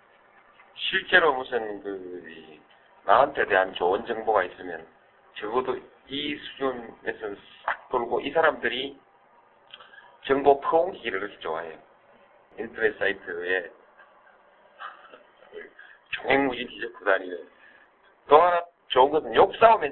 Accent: native